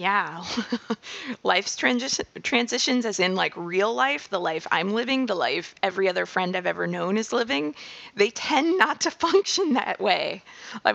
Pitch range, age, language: 185-240 Hz, 20-39, English